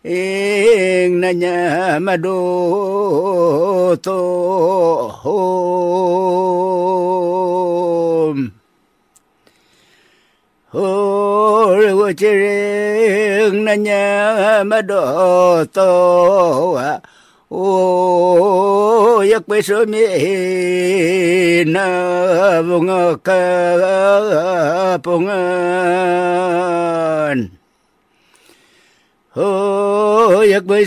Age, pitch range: 60-79, 180-205 Hz